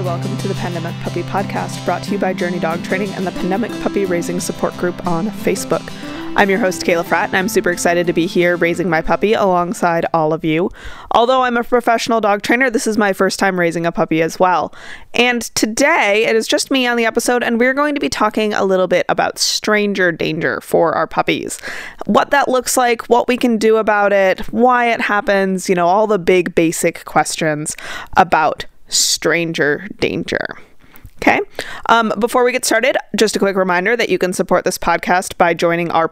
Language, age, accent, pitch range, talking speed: English, 20-39, American, 180-240 Hz, 205 wpm